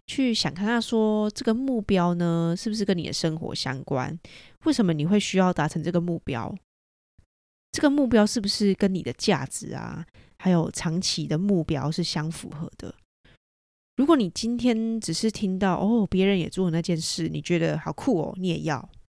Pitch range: 165-220 Hz